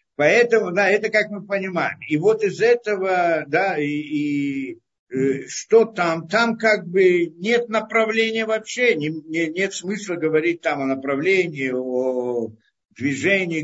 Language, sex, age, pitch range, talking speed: Russian, male, 50-69, 145-205 Hz, 140 wpm